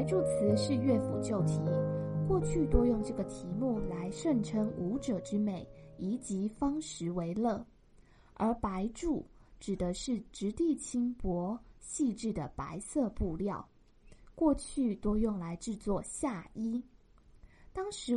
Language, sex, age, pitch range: Chinese, female, 20-39, 195-260 Hz